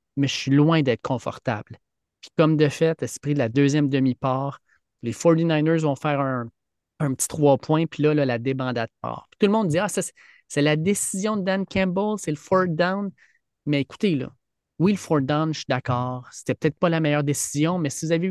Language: French